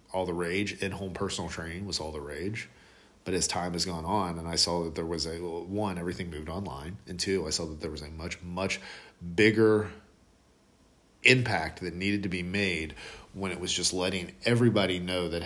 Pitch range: 85-95 Hz